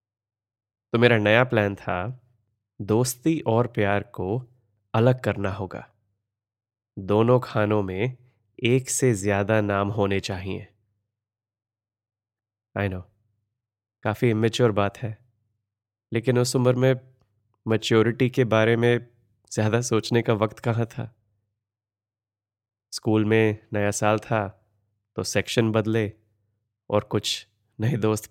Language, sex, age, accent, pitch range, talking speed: Hindi, male, 20-39, native, 105-115 Hz, 110 wpm